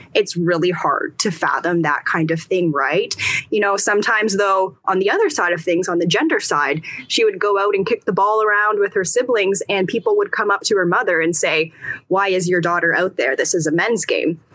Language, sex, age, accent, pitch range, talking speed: English, female, 10-29, American, 175-250 Hz, 235 wpm